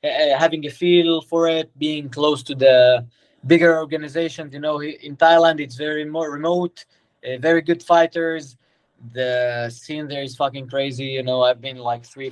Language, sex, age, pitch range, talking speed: English, male, 20-39, 125-160 Hz, 170 wpm